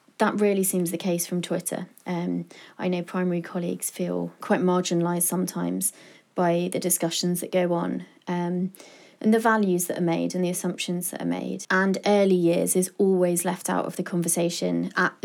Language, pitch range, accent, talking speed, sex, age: English, 170-185 Hz, British, 180 wpm, female, 20-39